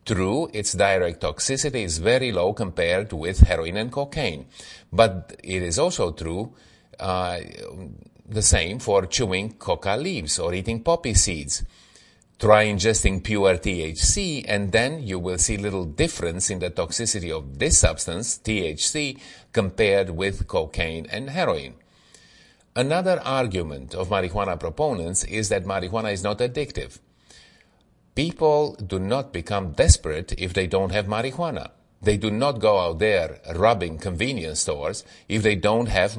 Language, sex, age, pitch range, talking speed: English, male, 50-69, 90-120 Hz, 140 wpm